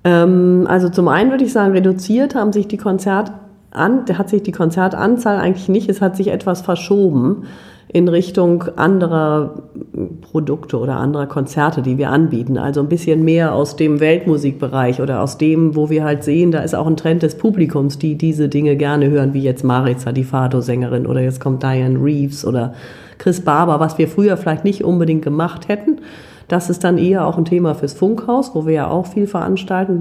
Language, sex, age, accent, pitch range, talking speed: German, female, 40-59, German, 140-180 Hz, 190 wpm